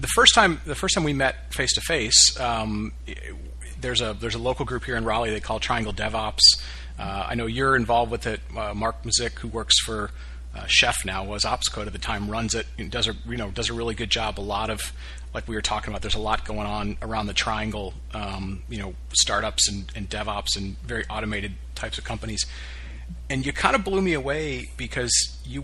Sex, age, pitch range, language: male, 40-59, 95-120 Hz, English